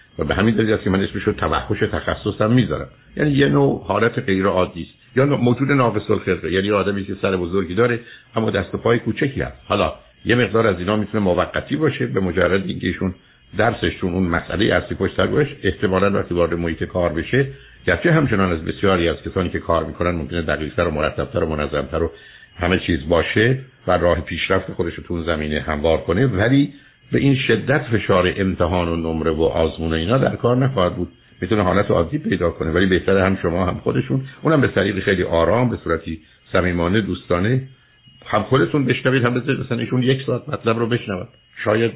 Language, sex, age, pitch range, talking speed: Persian, male, 60-79, 85-115 Hz, 180 wpm